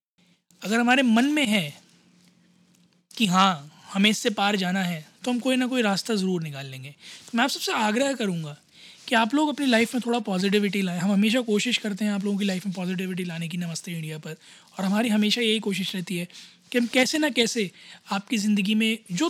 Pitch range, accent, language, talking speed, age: 185-225 Hz, native, Hindi, 210 wpm, 20-39